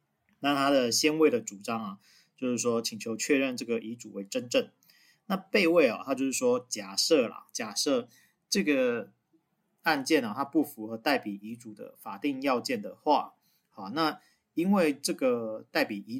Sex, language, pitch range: male, Chinese, 110-150 Hz